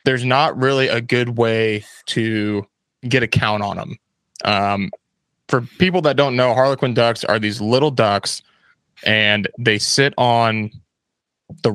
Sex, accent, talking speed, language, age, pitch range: male, American, 150 wpm, English, 20-39, 110-130 Hz